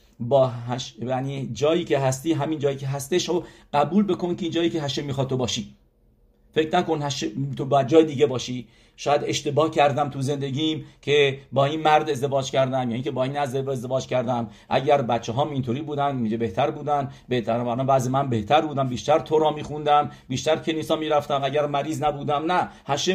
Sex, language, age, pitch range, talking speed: male, English, 50-69, 130-170 Hz, 180 wpm